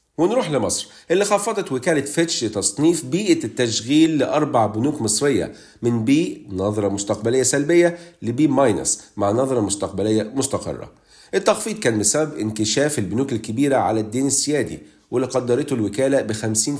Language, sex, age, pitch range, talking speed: Arabic, male, 40-59, 110-150 Hz, 130 wpm